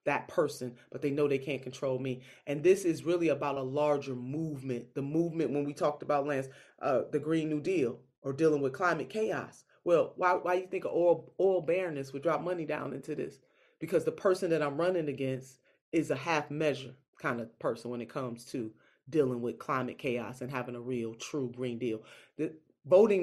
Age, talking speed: 30-49, 205 wpm